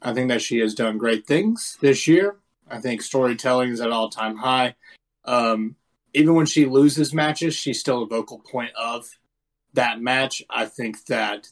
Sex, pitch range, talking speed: male, 115-140 Hz, 175 wpm